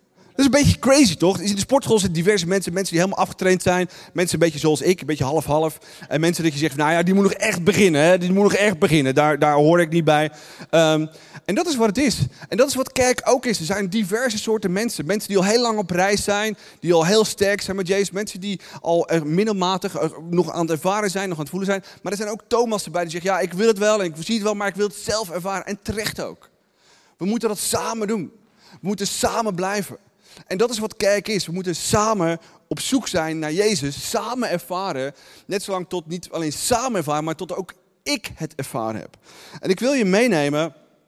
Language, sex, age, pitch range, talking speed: Dutch, male, 30-49, 155-205 Hz, 245 wpm